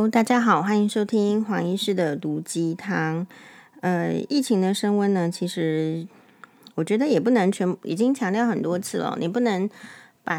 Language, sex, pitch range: Chinese, female, 170-220 Hz